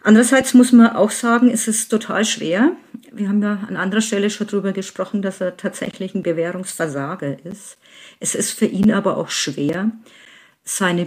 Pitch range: 180-230 Hz